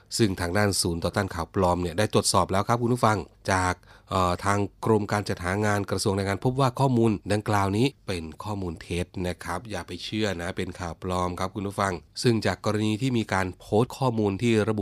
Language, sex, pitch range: Thai, male, 90-110 Hz